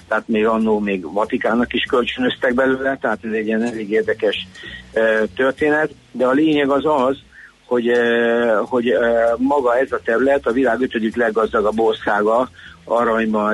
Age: 50-69